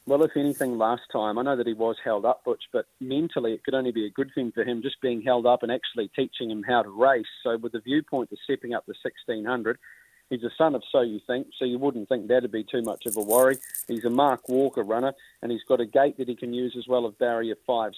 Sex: male